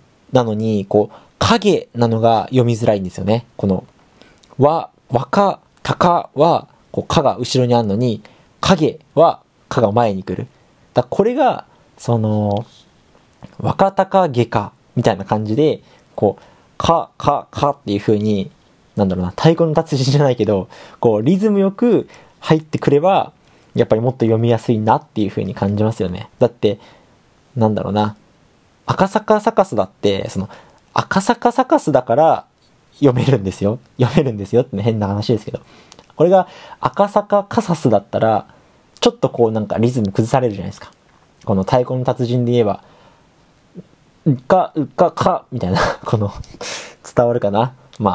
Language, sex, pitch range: Japanese, male, 105-140 Hz